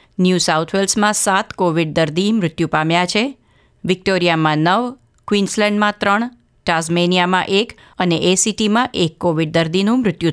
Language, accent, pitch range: Gujarati, native, 170-215 Hz